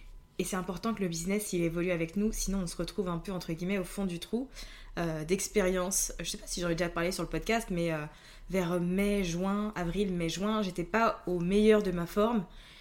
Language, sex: French, female